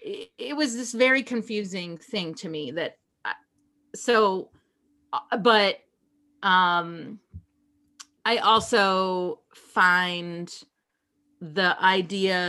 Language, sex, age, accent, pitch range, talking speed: English, female, 30-49, American, 185-245 Hz, 80 wpm